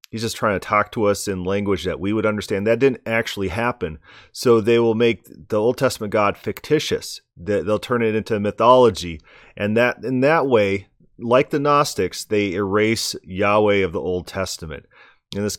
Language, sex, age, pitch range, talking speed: English, male, 30-49, 95-115 Hz, 185 wpm